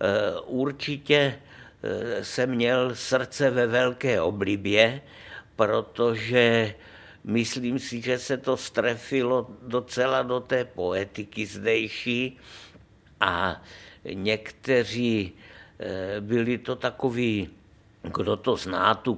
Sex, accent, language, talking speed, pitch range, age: male, native, Czech, 90 wpm, 105-120 Hz, 60-79